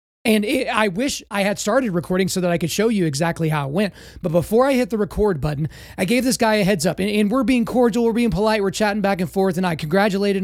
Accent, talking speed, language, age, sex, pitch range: American, 270 wpm, English, 30-49, male, 180-220 Hz